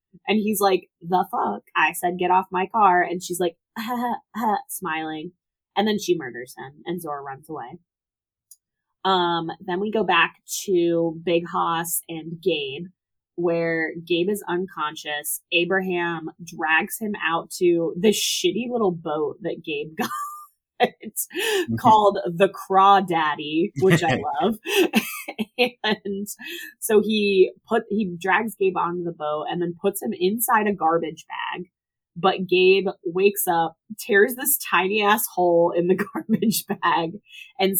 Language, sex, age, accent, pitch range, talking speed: English, female, 20-39, American, 170-210 Hz, 145 wpm